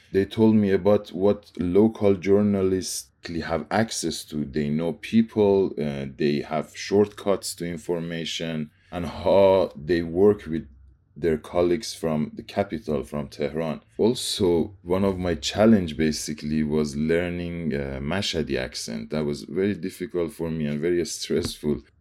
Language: English